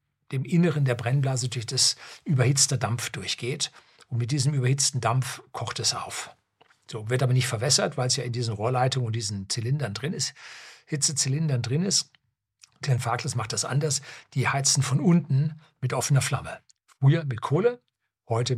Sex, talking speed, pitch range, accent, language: male, 170 wpm, 120-145 Hz, German, German